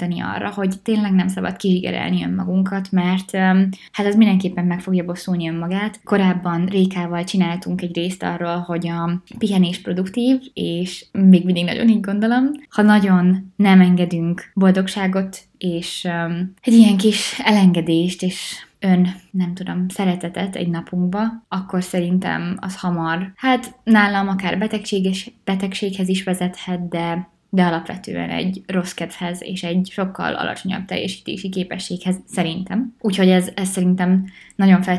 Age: 20-39